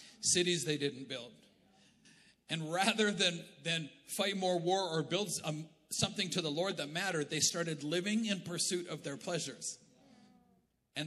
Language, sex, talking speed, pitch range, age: English, male, 150 wpm, 160-205 Hz, 40-59